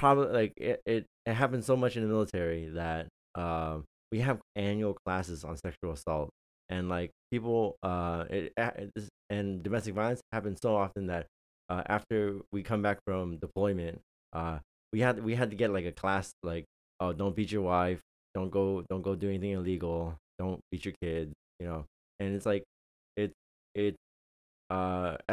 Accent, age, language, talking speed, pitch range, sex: American, 20-39, English, 180 wpm, 80-100 Hz, male